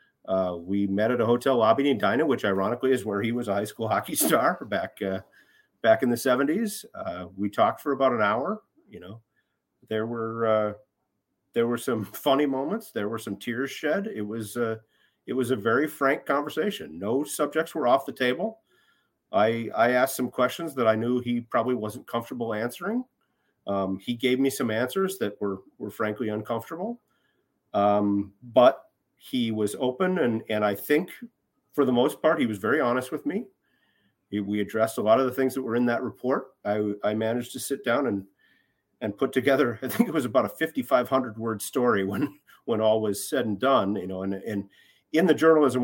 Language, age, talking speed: English, 40-59, 200 wpm